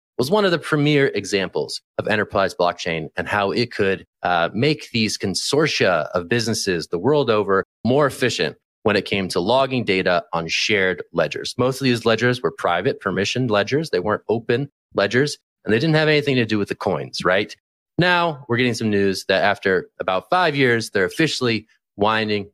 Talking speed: 185 wpm